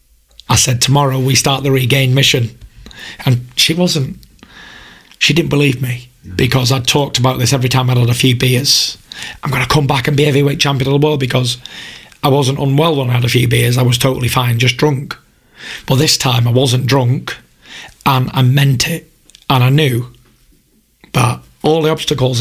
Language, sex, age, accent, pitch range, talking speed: English, male, 30-49, British, 125-145 Hz, 195 wpm